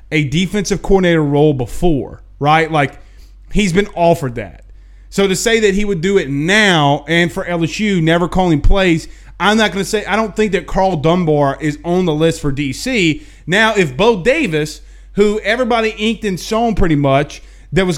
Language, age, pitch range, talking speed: English, 30-49, 135-195 Hz, 185 wpm